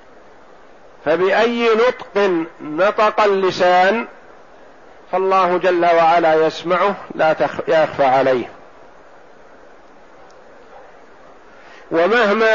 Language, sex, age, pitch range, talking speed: Arabic, male, 50-69, 155-205 Hz, 55 wpm